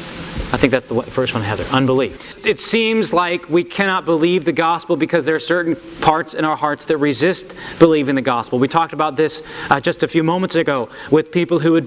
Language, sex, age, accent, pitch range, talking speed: English, male, 40-59, American, 145-175 Hz, 215 wpm